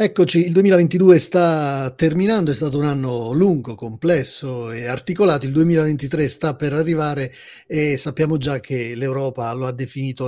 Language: Italian